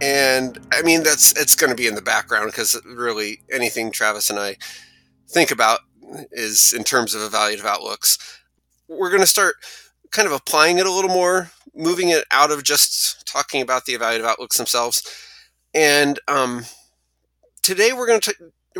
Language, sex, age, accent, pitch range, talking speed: English, male, 30-49, American, 115-165 Hz, 170 wpm